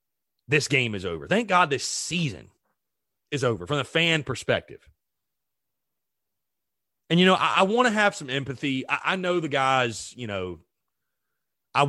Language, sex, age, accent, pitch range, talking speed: English, male, 30-49, American, 130-185 Hz, 160 wpm